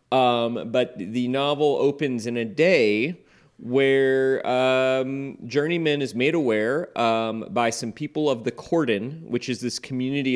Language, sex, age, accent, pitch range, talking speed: English, male, 30-49, American, 105-135 Hz, 145 wpm